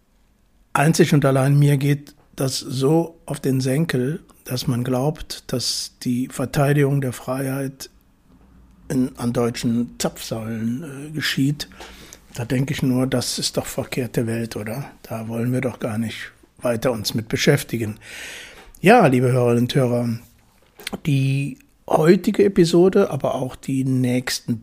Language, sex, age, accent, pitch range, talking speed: German, male, 60-79, German, 125-160 Hz, 130 wpm